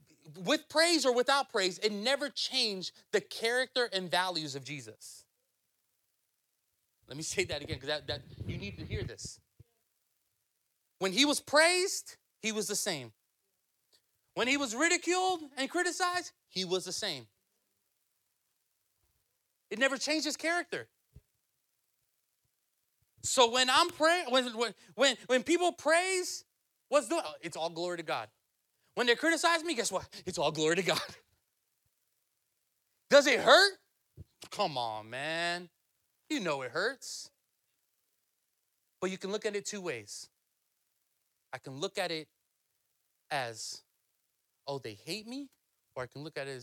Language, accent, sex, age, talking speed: English, American, male, 30-49, 145 wpm